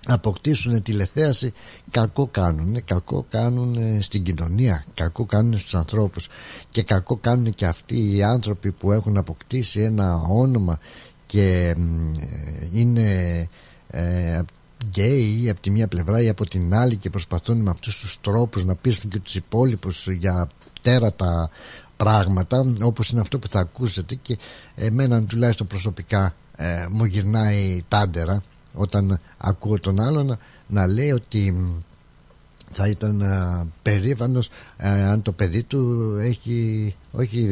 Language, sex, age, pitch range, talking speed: Greek, male, 60-79, 95-115 Hz, 125 wpm